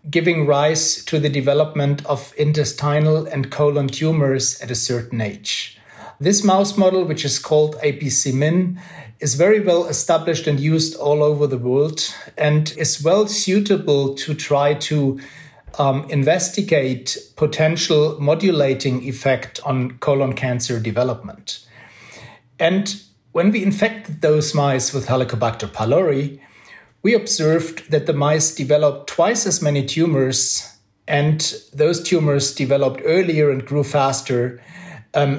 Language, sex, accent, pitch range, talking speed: English, male, German, 140-165 Hz, 125 wpm